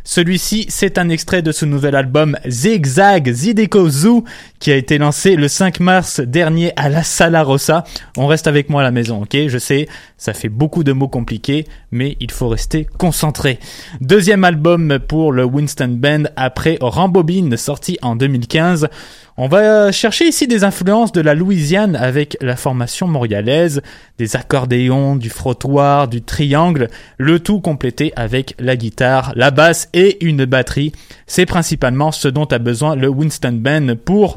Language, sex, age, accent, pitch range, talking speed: French, male, 20-39, French, 130-170 Hz, 170 wpm